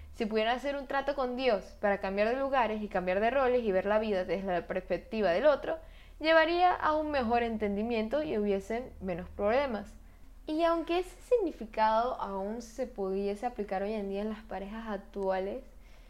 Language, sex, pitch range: Spanish, female, 210-260 Hz